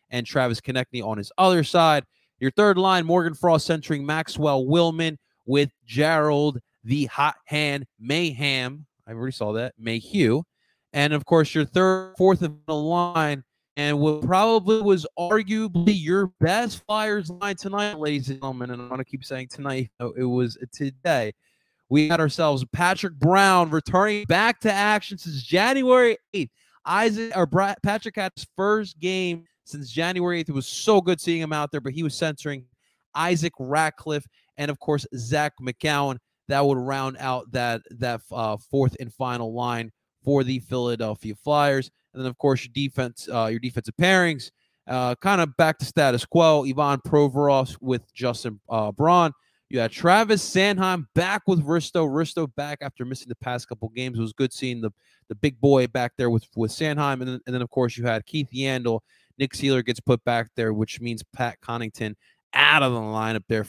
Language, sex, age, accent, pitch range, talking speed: English, male, 20-39, American, 125-170 Hz, 180 wpm